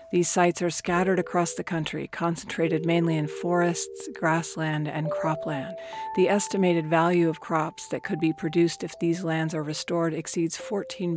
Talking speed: 160 wpm